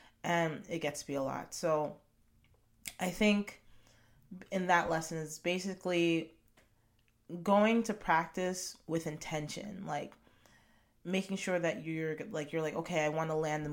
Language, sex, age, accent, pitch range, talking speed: English, female, 30-49, American, 145-180 Hz, 150 wpm